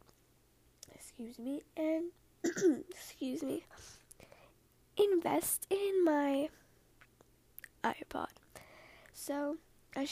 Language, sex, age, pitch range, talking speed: English, female, 10-29, 260-330 Hz, 60 wpm